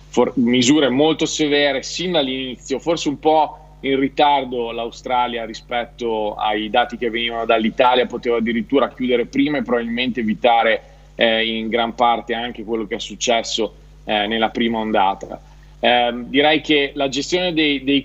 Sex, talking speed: male, 150 wpm